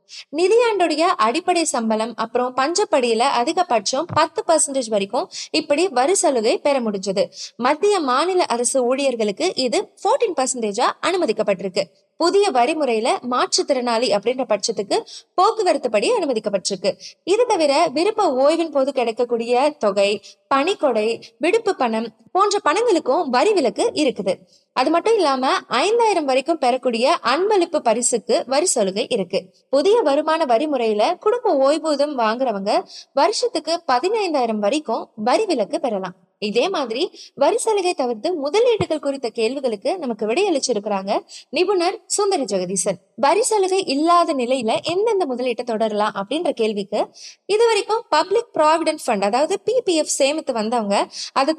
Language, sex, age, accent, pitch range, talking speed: Tamil, female, 20-39, native, 230-355 Hz, 105 wpm